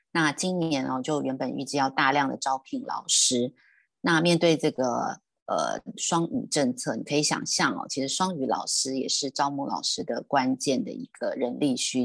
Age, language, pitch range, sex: 30-49, Chinese, 135-170 Hz, female